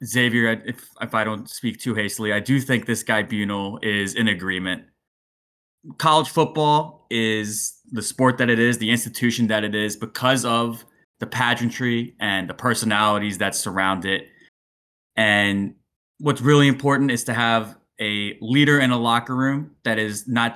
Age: 20-39